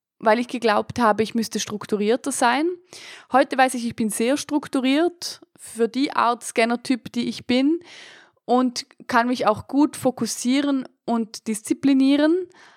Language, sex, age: German, female, 20-39